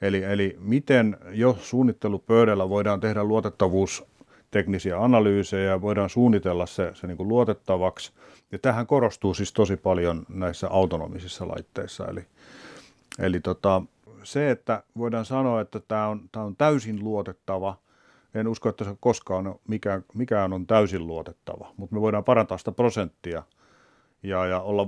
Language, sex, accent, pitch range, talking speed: English, male, Finnish, 95-110 Hz, 145 wpm